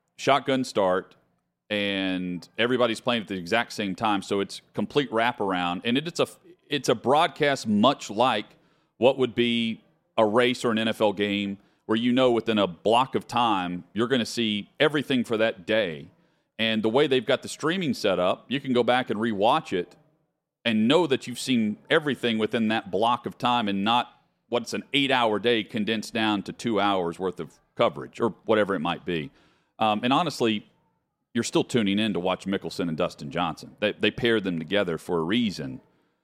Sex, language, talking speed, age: male, English, 185 wpm, 40-59